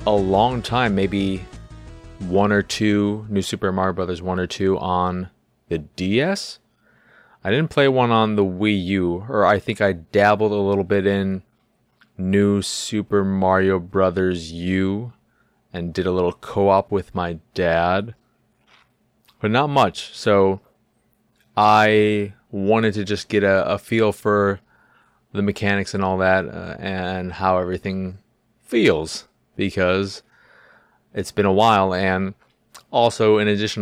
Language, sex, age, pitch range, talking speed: English, male, 20-39, 90-105 Hz, 140 wpm